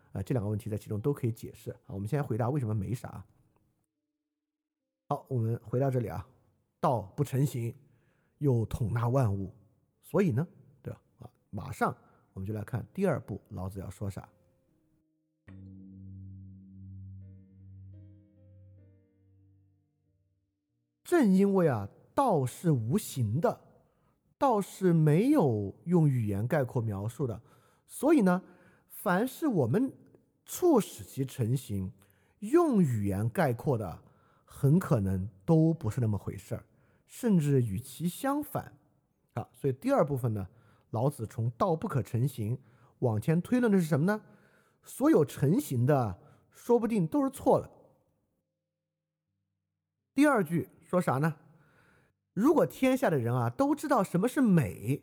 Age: 50-69